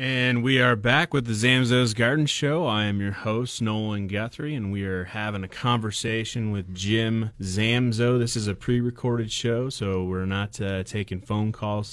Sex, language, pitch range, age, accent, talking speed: male, English, 95-120 Hz, 30-49, American, 180 wpm